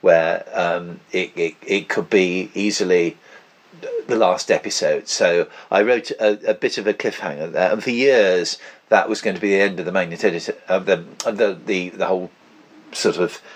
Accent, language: British, English